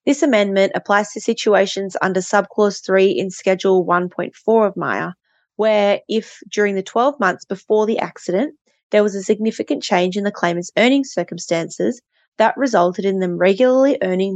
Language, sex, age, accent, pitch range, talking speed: English, female, 20-39, Australian, 185-235 Hz, 160 wpm